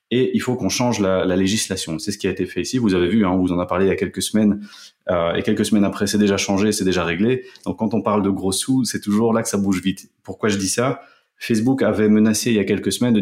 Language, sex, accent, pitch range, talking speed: French, male, French, 95-110 Hz, 305 wpm